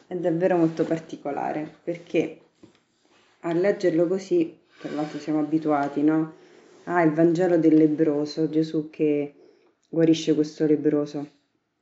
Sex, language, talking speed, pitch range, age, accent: female, Italian, 115 wpm, 155-195 Hz, 30-49, native